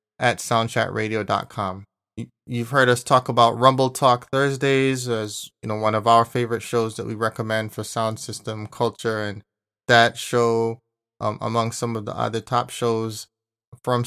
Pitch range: 105-120 Hz